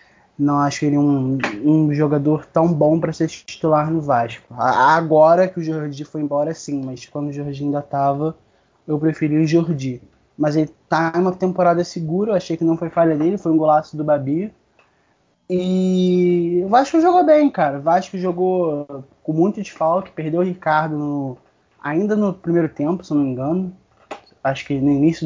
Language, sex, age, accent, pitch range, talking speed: English, male, 20-39, Brazilian, 140-170 Hz, 190 wpm